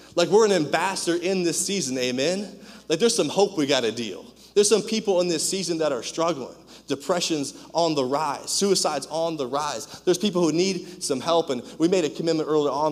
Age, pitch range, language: 30-49, 135-165 Hz, English